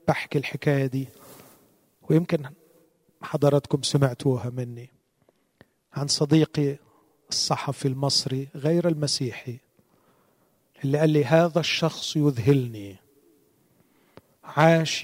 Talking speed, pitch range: 80 wpm, 130-160 Hz